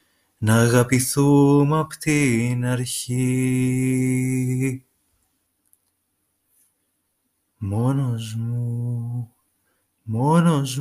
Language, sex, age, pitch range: Greek, male, 30-49, 115-150 Hz